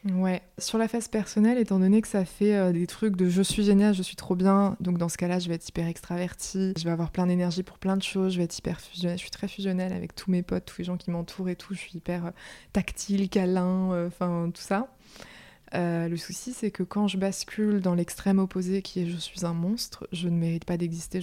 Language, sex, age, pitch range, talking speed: French, female, 20-39, 175-195 Hz, 255 wpm